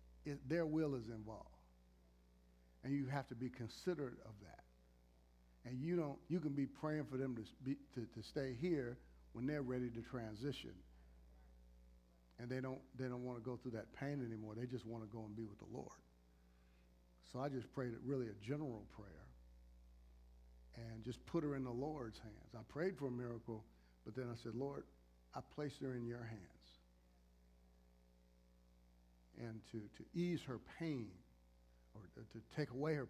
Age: 50-69